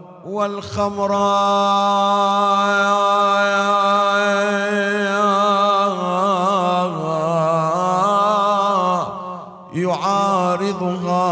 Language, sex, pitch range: Arabic, male, 155-200 Hz